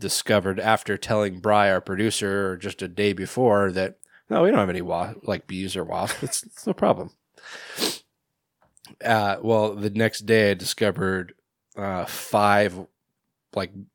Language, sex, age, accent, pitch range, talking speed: English, male, 20-39, American, 95-120 Hz, 155 wpm